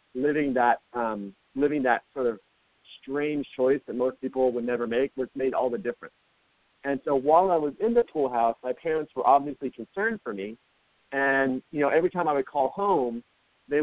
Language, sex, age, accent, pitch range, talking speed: English, male, 40-59, American, 125-150 Hz, 200 wpm